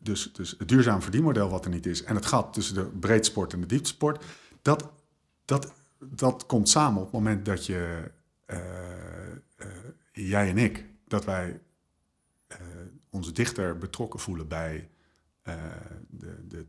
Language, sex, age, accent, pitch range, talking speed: Dutch, male, 50-69, Dutch, 90-115 Hz, 160 wpm